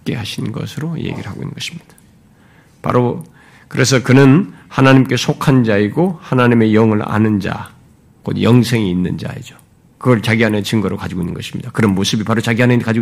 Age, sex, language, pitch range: 40-59, male, Korean, 110-160 Hz